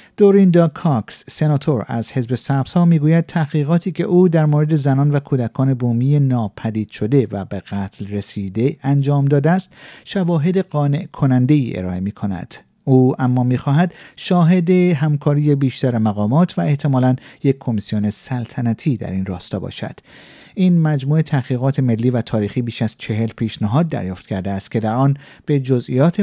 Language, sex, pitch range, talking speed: Persian, male, 115-160 Hz, 150 wpm